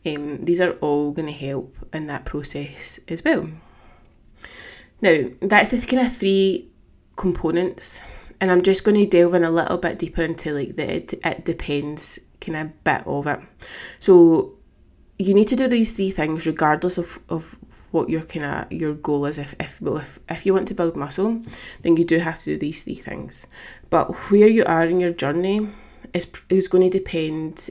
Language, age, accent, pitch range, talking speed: English, 20-39, British, 155-195 Hz, 190 wpm